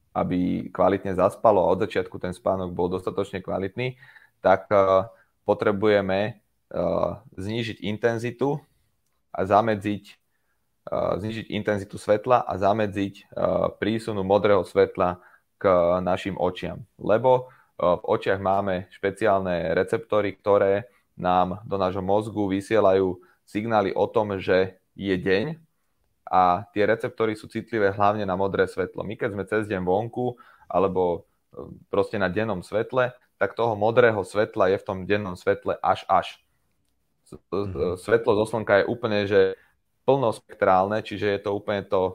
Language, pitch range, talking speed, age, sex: Slovak, 95-110 Hz, 125 wpm, 30-49, male